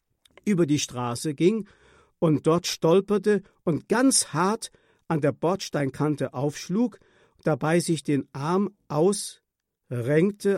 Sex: male